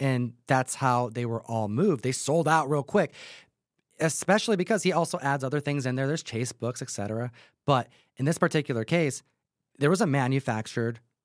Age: 30-49